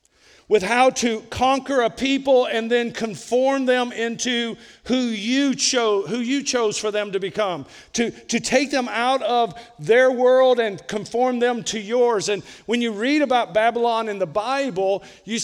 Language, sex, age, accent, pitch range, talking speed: English, male, 50-69, American, 215-255 Hz, 170 wpm